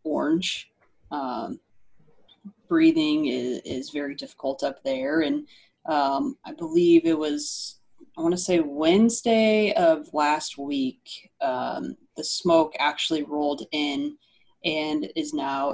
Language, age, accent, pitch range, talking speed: English, 20-39, American, 150-190 Hz, 120 wpm